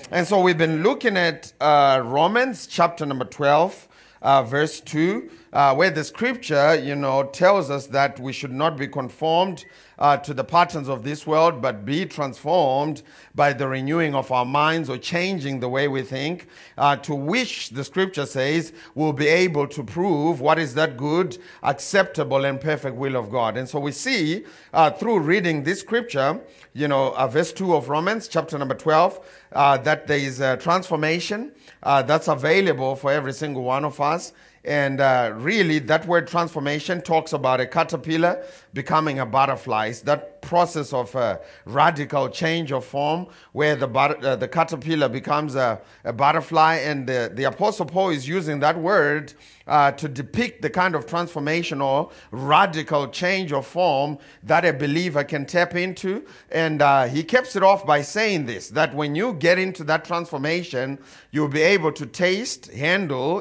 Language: English